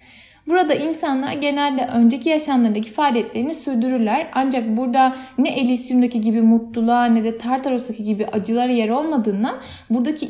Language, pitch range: Turkish, 230-275 Hz